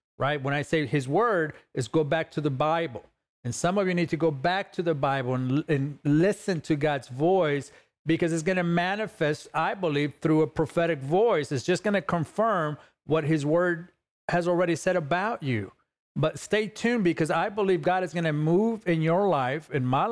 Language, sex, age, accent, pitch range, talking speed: English, male, 40-59, American, 150-185 Hz, 205 wpm